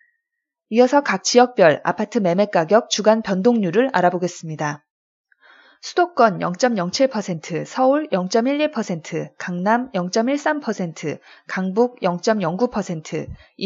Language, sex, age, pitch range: Korean, female, 20-39, 180-260 Hz